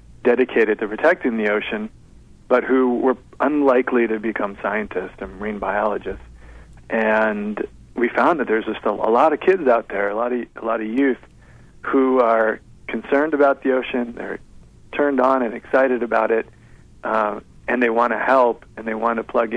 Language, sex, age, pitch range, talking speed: English, male, 40-59, 110-125 Hz, 180 wpm